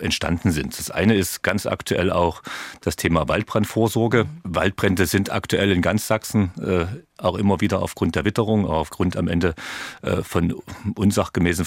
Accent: German